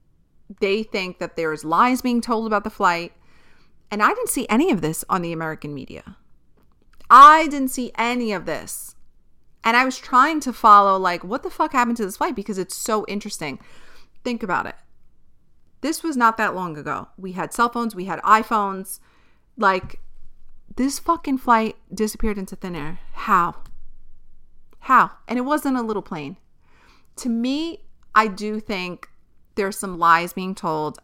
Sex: female